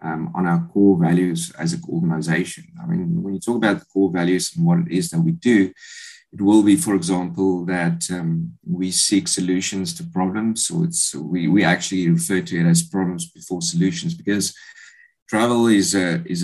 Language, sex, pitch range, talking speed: English, male, 90-125 Hz, 195 wpm